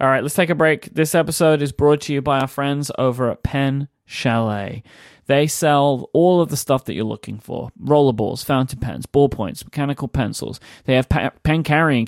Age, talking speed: 20-39, 195 wpm